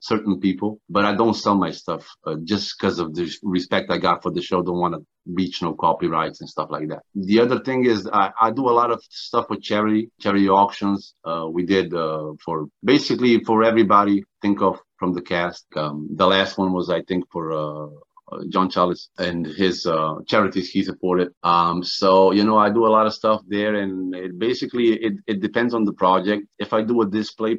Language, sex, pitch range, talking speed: English, male, 95-125 Hz, 215 wpm